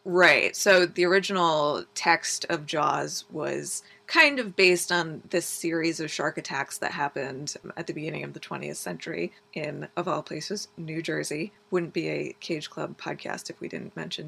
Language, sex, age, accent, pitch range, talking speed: English, female, 20-39, American, 155-190 Hz, 175 wpm